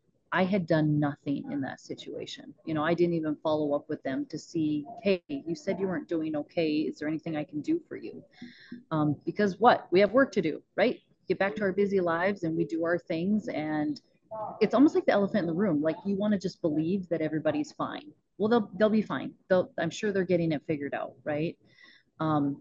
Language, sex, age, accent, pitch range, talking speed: English, female, 30-49, American, 155-200 Hz, 230 wpm